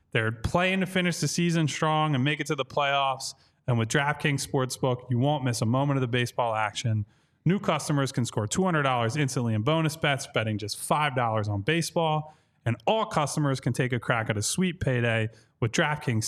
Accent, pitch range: American, 115-155 Hz